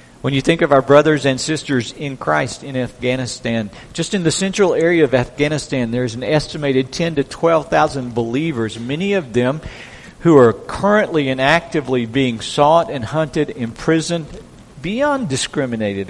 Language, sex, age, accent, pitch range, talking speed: English, male, 50-69, American, 125-165 Hz, 155 wpm